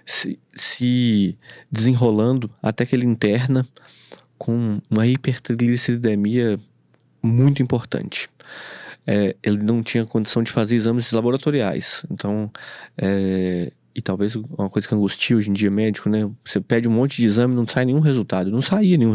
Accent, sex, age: Brazilian, male, 20-39